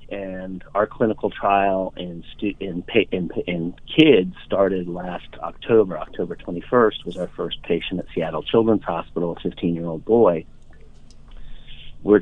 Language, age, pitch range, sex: English, 40-59, 85-105 Hz, male